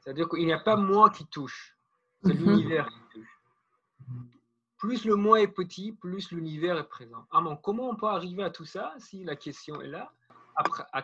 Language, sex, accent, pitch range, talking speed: French, male, French, 130-175 Hz, 195 wpm